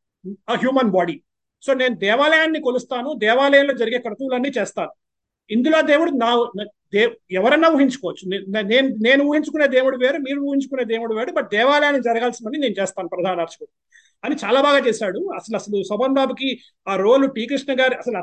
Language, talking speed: Telugu, 150 wpm